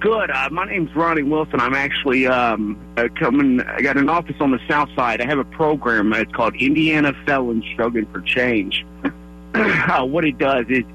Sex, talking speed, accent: male, 195 wpm, American